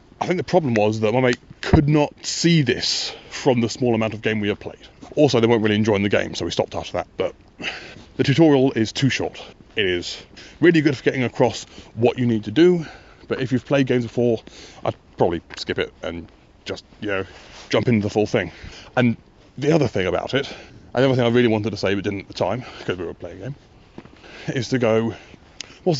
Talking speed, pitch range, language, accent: 230 wpm, 105-135 Hz, English, British